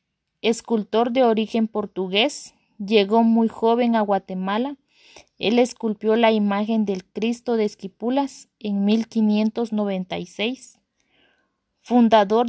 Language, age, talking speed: Spanish, 20-39, 95 wpm